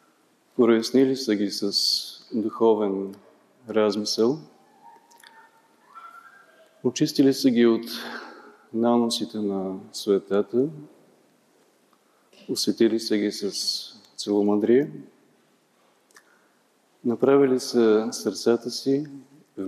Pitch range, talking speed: 105-130 Hz, 70 wpm